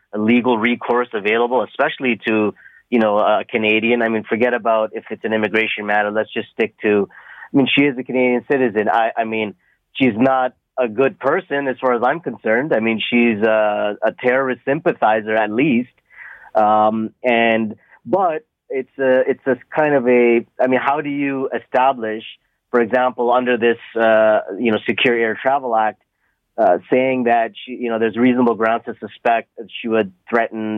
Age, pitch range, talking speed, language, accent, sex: 30-49, 110-130 Hz, 180 wpm, English, American, male